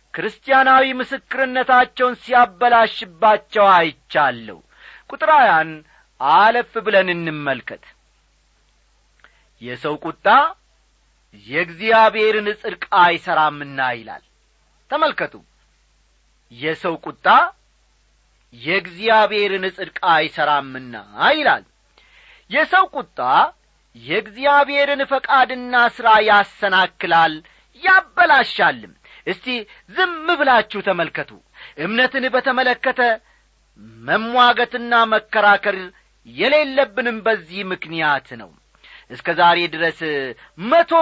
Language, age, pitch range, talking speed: Amharic, 40-59, 175-255 Hz, 65 wpm